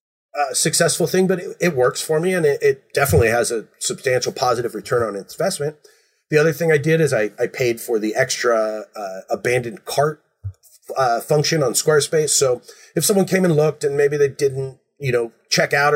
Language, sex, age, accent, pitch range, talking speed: English, male, 30-49, American, 120-180 Hz, 205 wpm